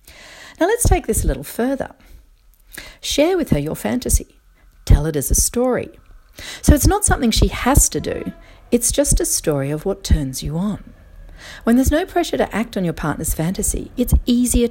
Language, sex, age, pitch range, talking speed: English, female, 50-69, 150-245 Hz, 190 wpm